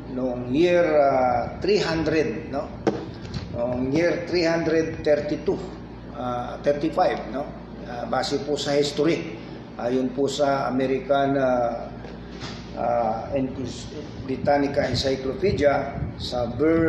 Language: English